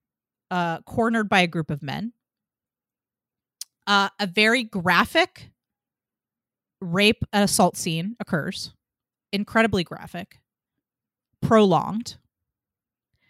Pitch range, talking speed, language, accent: 180-220 Hz, 85 wpm, English, American